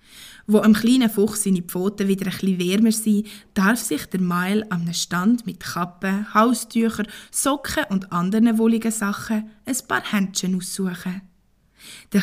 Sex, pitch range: female, 185-225 Hz